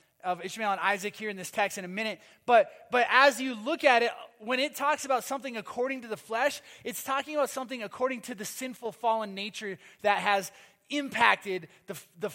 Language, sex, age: English, male, 20-39